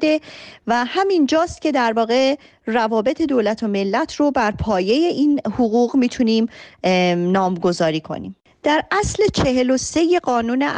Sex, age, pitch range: female, 30-49, 200-265 Hz